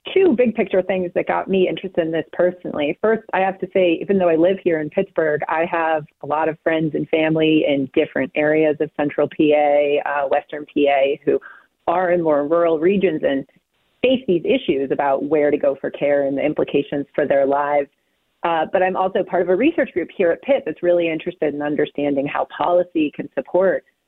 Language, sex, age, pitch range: English, female, 30-49, 145-185 Hz